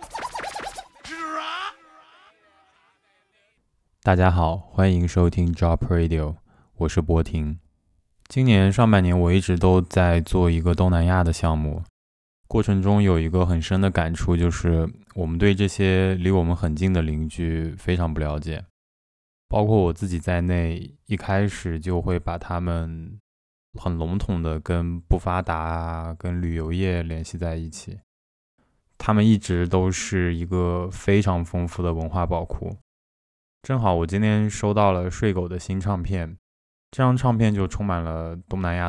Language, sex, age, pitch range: Chinese, male, 20-39, 85-95 Hz